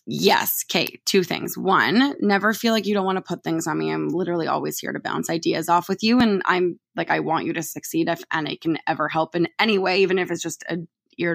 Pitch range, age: 175-210 Hz, 20-39